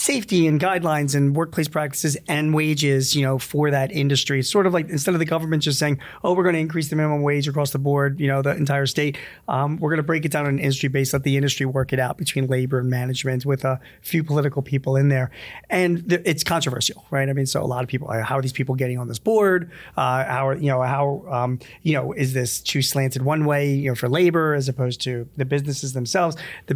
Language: English